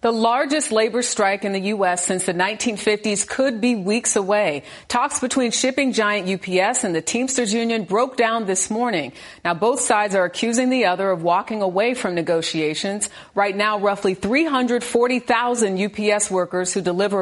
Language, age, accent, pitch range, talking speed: English, 40-59, American, 190-240 Hz, 165 wpm